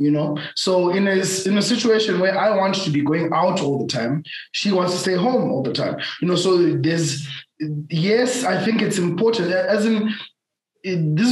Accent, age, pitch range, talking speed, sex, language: South African, 20-39, 150-195 Hz, 200 wpm, male, English